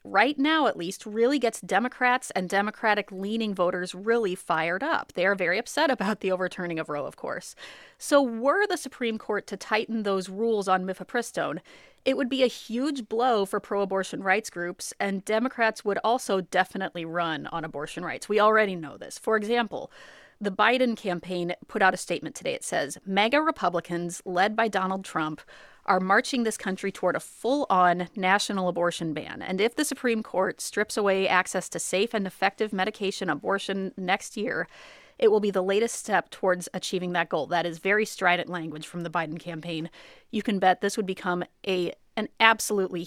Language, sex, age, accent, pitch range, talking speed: English, female, 30-49, American, 180-225 Hz, 185 wpm